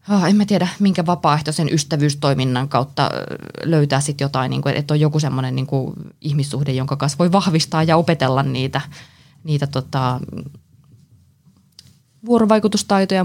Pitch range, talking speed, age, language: 135-170 Hz, 110 wpm, 20-39, Finnish